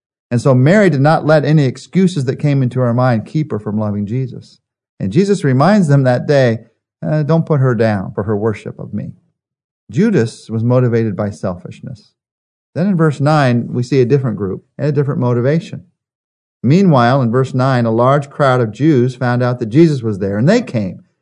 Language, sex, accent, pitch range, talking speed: English, male, American, 120-170 Hz, 200 wpm